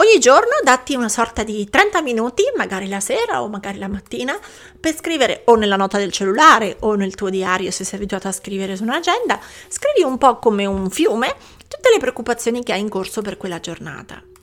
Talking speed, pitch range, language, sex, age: 205 wpm, 200-295 Hz, Italian, female, 30-49